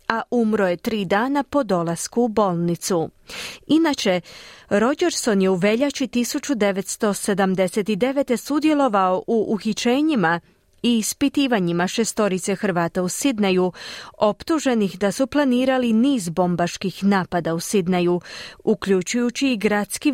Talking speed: 105 wpm